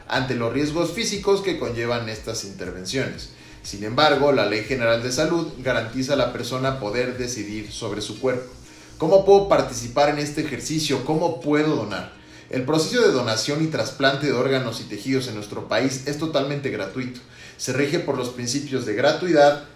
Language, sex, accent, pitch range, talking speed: Spanish, male, Mexican, 120-145 Hz, 170 wpm